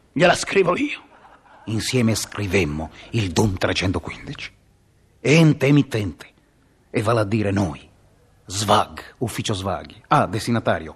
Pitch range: 100-125 Hz